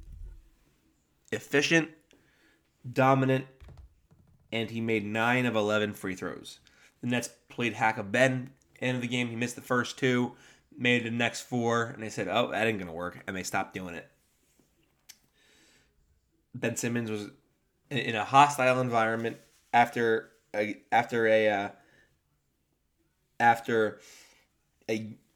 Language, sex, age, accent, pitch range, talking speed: English, male, 20-39, American, 100-120 Hz, 135 wpm